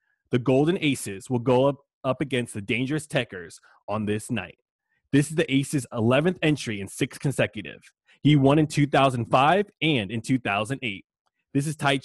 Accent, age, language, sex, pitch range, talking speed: American, 20-39, English, male, 115-145 Hz, 150 wpm